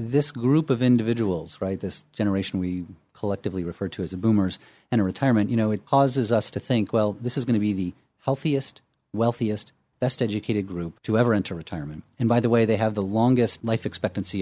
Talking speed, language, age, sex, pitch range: 210 wpm, English, 40-59, male, 100-125 Hz